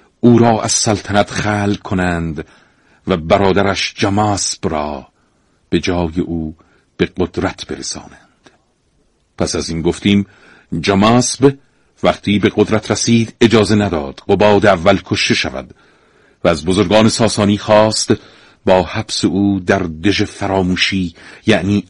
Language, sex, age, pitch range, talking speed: Persian, male, 50-69, 90-105 Hz, 120 wpm